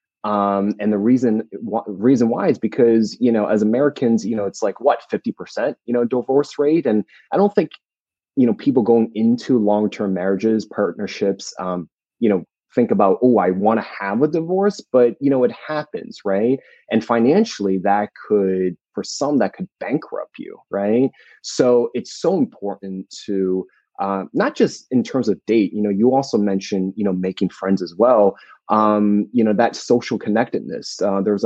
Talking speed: 180 wpm